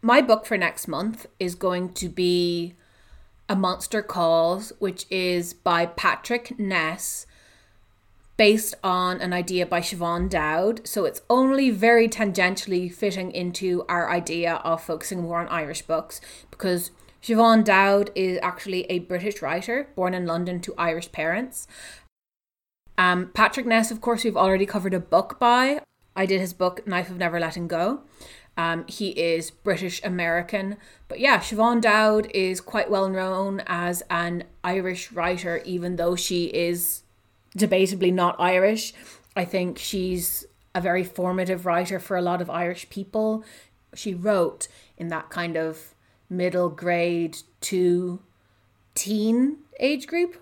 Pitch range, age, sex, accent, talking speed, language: 170-205 Hz, 30-49, female, Irish, 145 wpm, English